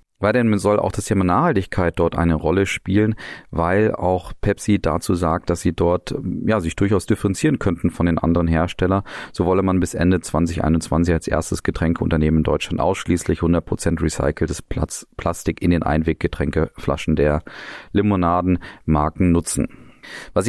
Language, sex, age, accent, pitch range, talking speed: German, male, 40-59, German, 85-100 Hz, 145 wpm